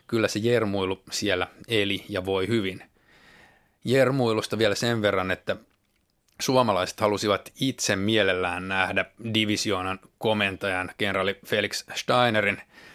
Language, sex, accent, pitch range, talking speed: Finnish, male, native, 95-105 Hz, 105 wpm